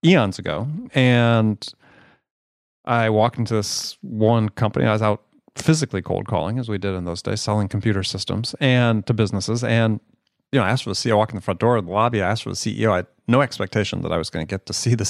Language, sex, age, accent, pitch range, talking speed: English, male, 30-49, American, 100-125 Hz, 245 wpm